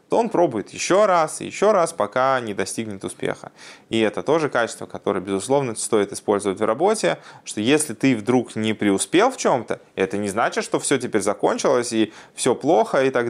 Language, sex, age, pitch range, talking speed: Russian, male, 20-39, 105-130 Hz, 190 wpm